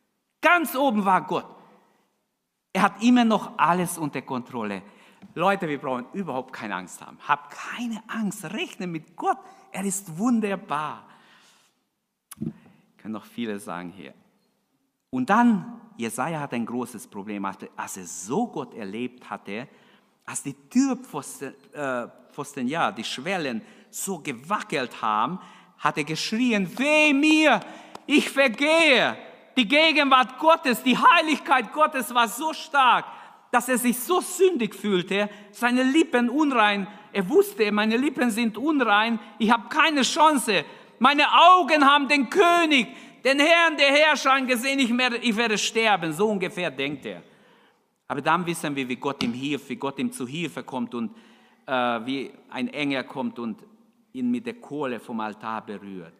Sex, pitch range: male, 170-270 Hz